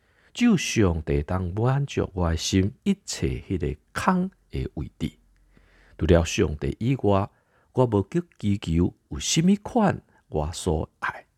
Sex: male